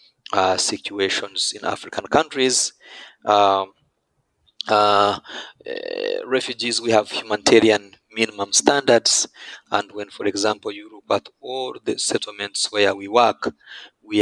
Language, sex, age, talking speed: Finnish, male, 30-49, 120 wpm